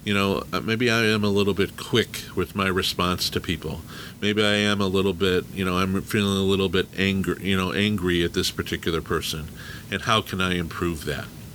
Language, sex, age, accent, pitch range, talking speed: English, male, 50-69, American, 90-105 Hz, 215 wpm